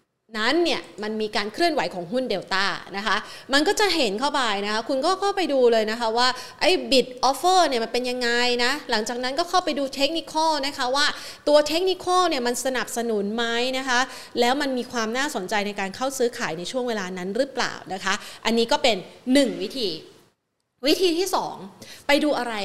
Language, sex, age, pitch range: Thai, female, 30-49, 195-260 Hz